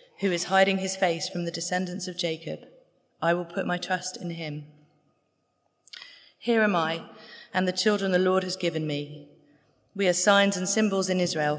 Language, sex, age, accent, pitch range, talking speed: English, female, 30-49, British, 170-205 Hz, 180 wpm